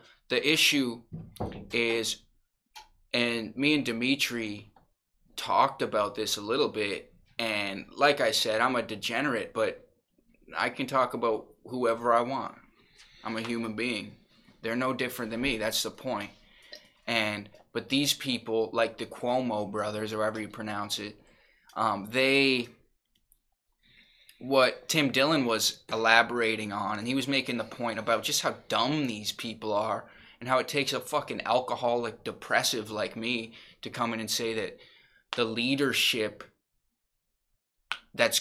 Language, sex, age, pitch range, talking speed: English, male, 20-39, 110-130 Hz, 145 wpm